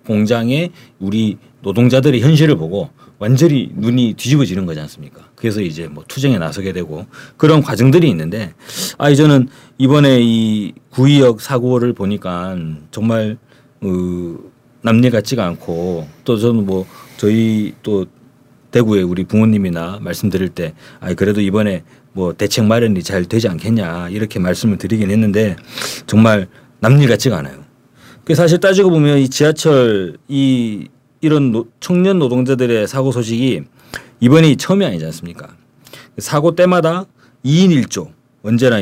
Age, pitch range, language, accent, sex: 40-59, 105-140 Hz, Korean, native, male